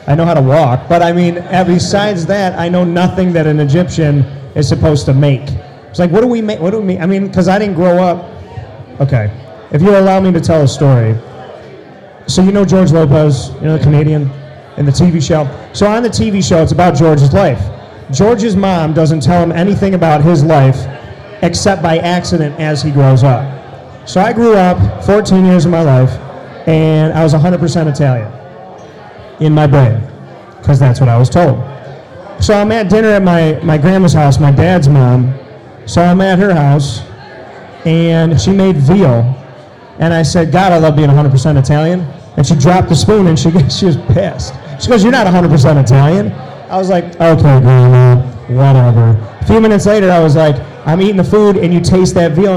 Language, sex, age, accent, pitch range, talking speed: English, male, 30-49, American, 140-180 Hz, 200 wpm